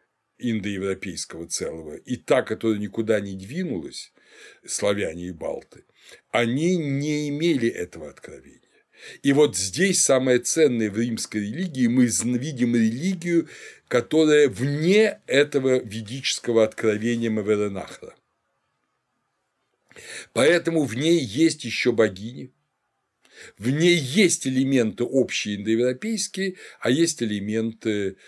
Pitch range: 110-150 Hz